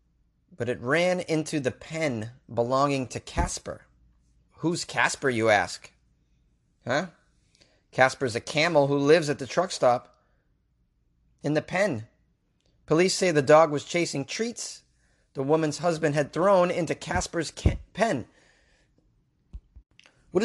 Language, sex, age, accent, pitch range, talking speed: English, male, 30-49, American, 115-165 Hz, 125 wpm